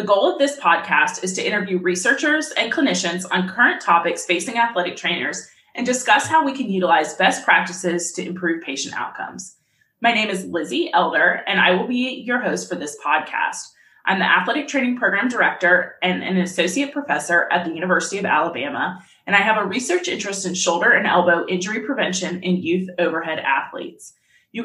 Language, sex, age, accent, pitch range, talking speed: English, female, 20-39, American, 175-240 Hz, 185 wpm